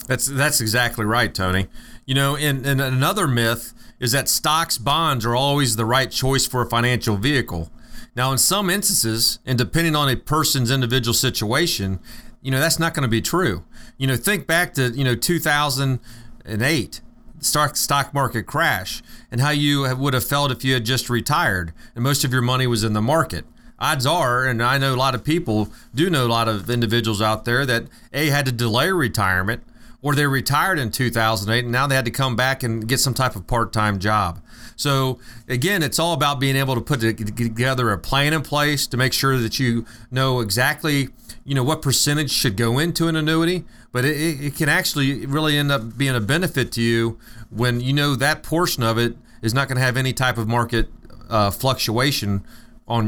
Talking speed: 200 wpm